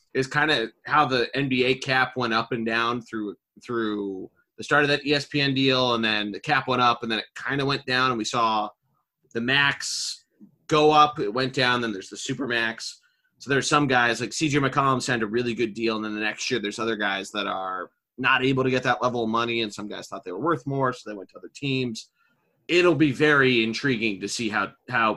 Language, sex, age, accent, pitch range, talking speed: English, male, 30-49, American, 110-135 Hz, 240 wpm